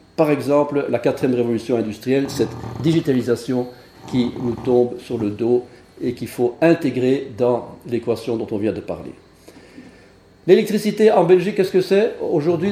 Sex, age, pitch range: male, 50-69, 125-170 Hz